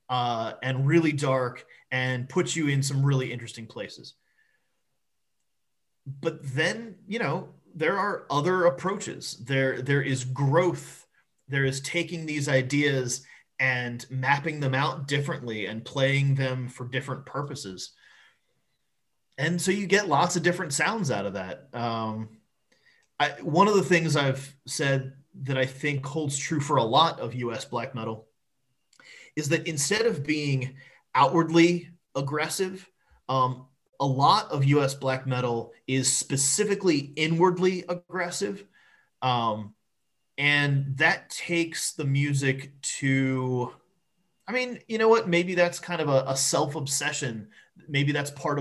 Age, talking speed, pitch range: 30-49, 135 wpm, 130-160 Hz